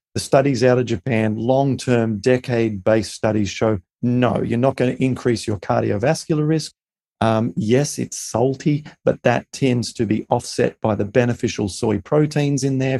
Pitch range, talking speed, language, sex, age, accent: 110-140 Hz, 160 wpm, English, male, 40-59, Australian